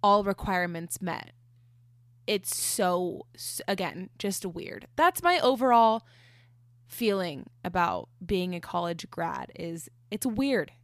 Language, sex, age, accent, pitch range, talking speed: English, female, 20-39, American, 165-220 Hz, 115 wpm